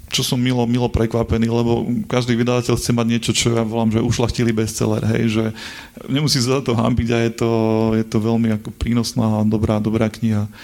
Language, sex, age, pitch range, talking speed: Slovak, male, 30-49, 110-130 Hz, 205 wpm